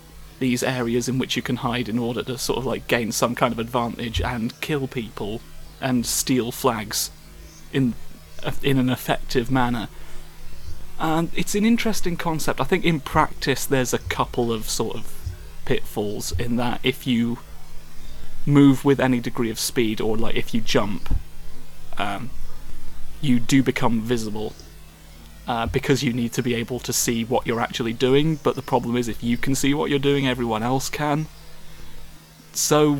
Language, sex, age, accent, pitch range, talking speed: English, male, 30-49, British, 110-135 Hz, 175 wpm